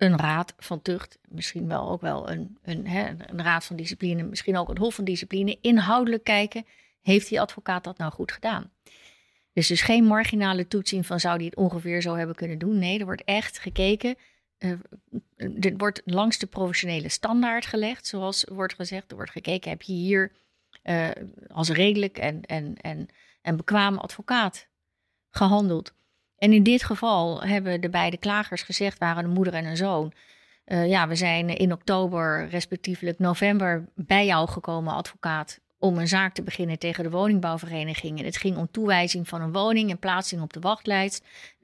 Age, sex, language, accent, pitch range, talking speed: 30-49, female, Dutch, Dutch, 170-205 Hz, 180 wpm